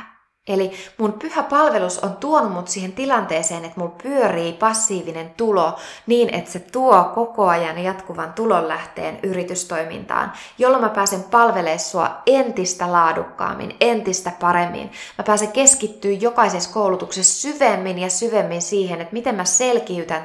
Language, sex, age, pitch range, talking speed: Finnish, female, 20-39, 175-230 Hz, 135 wpm